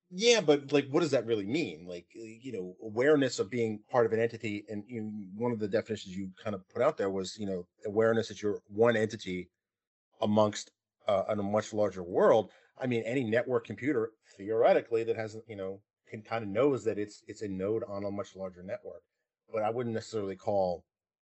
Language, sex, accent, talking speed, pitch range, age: English, male, American, 210 wpm, 95-115 Hz, 40-59